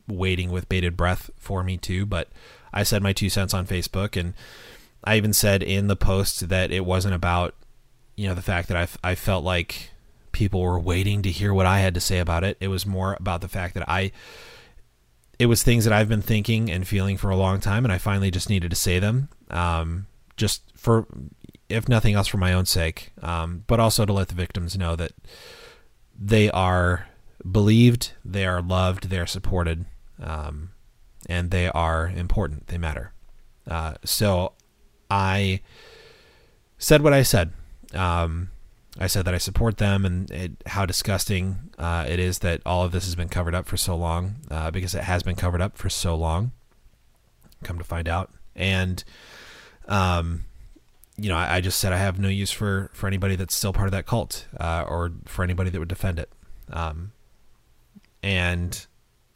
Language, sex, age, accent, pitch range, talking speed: English, male, 30-49, American, 90-100 Hz, 185 wpm